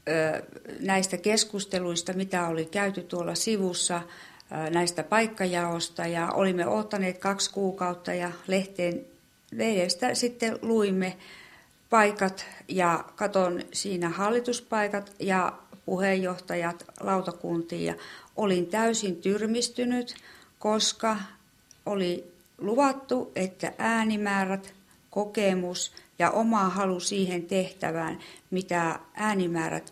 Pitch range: 175-210 Hz